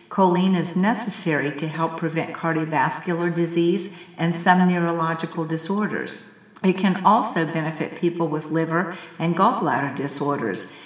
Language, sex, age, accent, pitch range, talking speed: English, female, 50-69, American, 155-185 Hz, 120 wpm